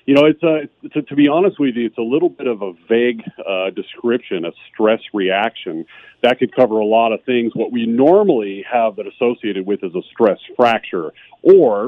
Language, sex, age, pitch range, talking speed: English, male, 40-59, 105-130 Hz, 210 wpm